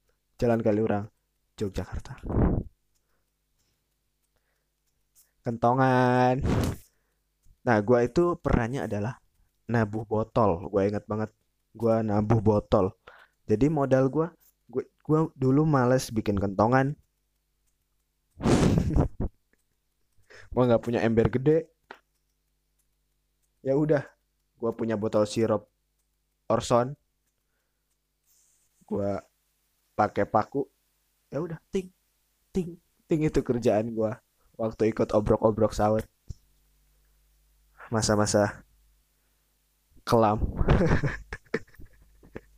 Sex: male